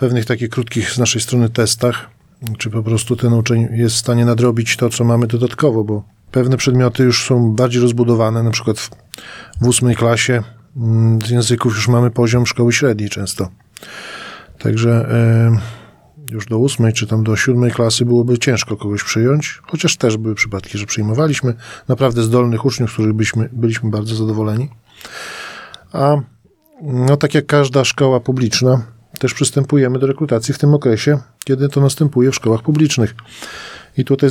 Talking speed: 160 wpm